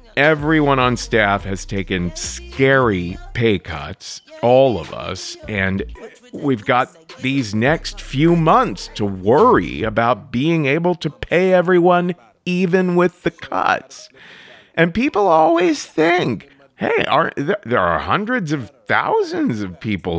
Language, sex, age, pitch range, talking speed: English, male, 40-59, 95-150 Hz, 130 wpm